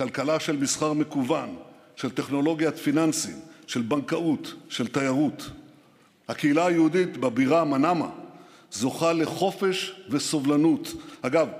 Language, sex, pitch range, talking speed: Hebrew, male, 150-180 Hz, 100 wpm